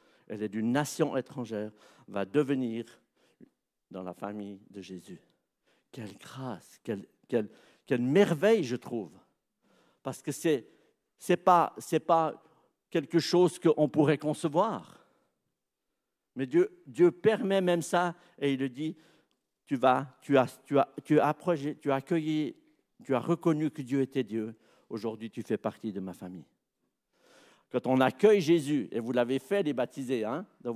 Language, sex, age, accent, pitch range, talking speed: French, male, 60-79, French, 125-180 Hz, 155 wpm